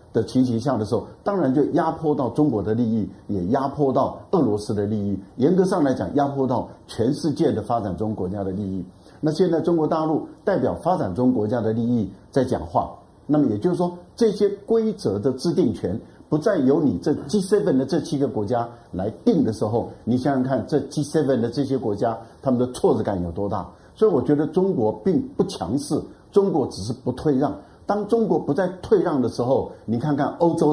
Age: 50-69